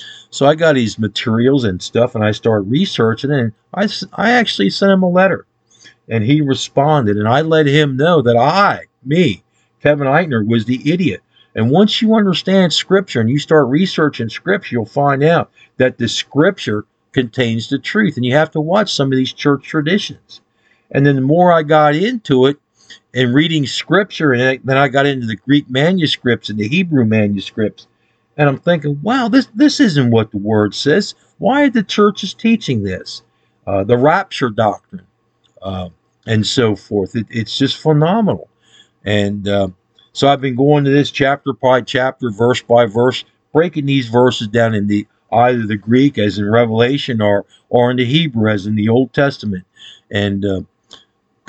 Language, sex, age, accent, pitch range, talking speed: English, male, 50-69, American, 110-155 Hz, 180 wpm